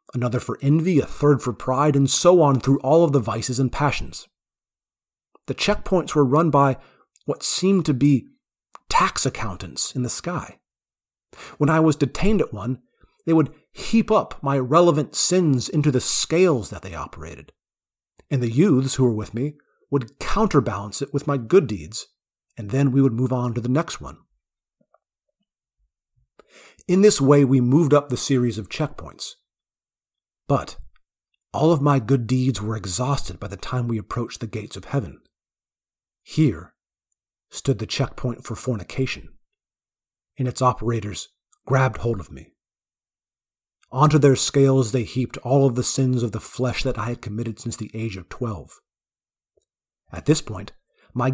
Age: 30-49